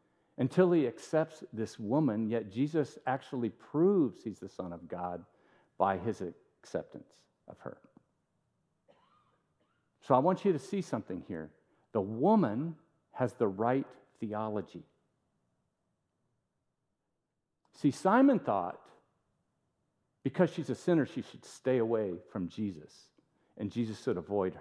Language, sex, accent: English, male, American